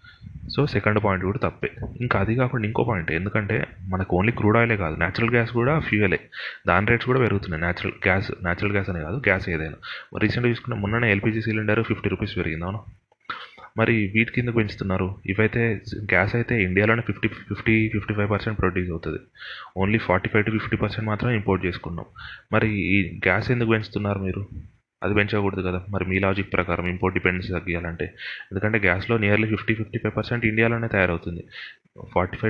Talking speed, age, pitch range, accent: 160 wpm, 30-49, 95-115 Hz, native